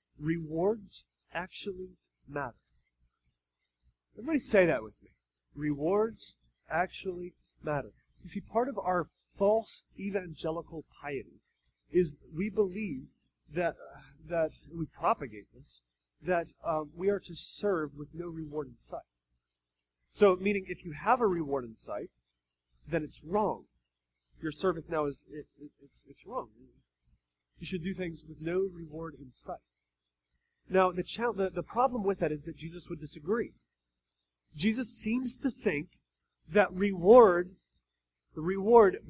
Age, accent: 30-49, American